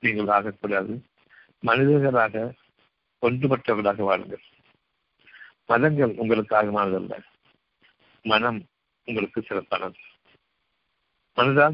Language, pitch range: Tamil, 105-125 Hz